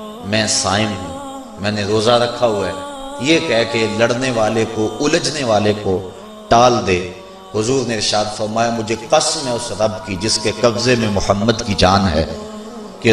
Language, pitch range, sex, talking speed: English, 105-145 Hz, male, 185 wpm